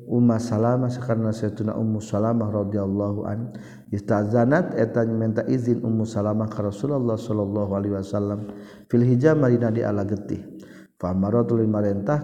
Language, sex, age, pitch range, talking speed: Indonesian, male, 50-69, 105-120 Hz, 125 wpm